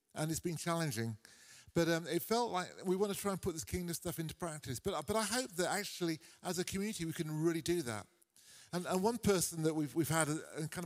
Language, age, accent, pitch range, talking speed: English, 40-59, British, 130-170 Hz, 245 wpm